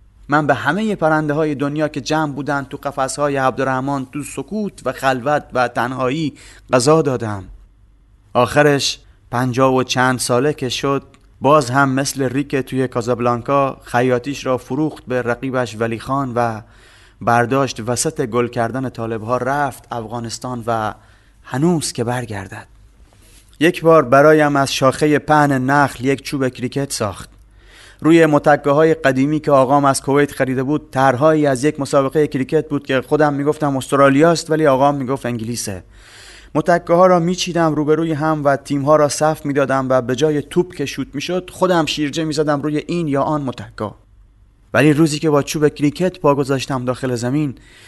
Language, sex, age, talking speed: Persian, male, 30-49, 160 wpm